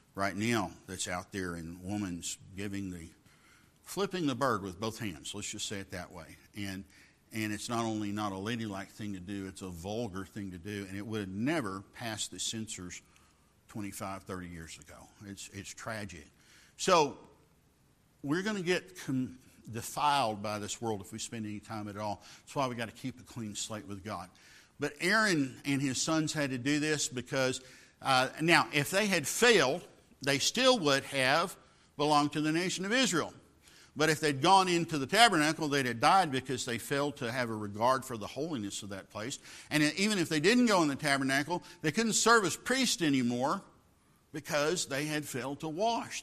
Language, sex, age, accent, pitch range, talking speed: English, male, 50-69, American, 100-150 Hz, 195 wpm